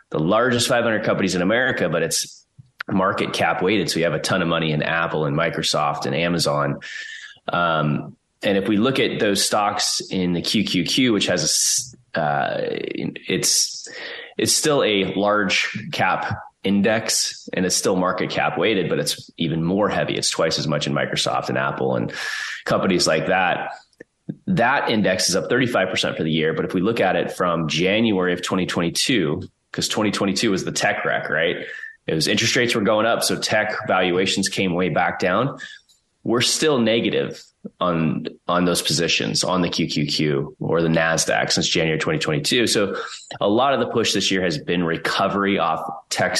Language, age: English, 20-39